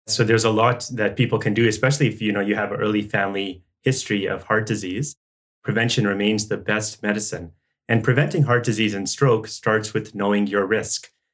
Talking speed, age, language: 190 wpm, 30-49, English